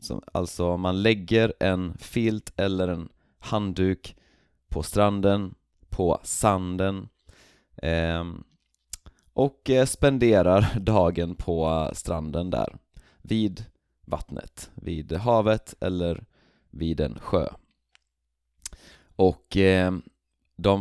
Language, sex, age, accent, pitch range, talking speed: Swedish, male, 30-49, native, 80-100 Hz, 80 wpm